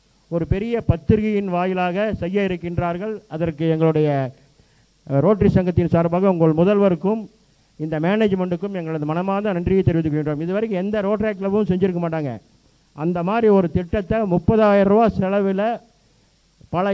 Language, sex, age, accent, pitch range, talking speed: Tamil, male, 50-69, native, 160-200 Hz, 120 wpm